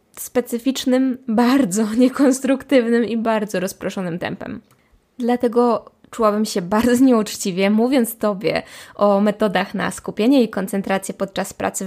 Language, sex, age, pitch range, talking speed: Polish, female, 20-39, 195-245 Hz, 110 wpm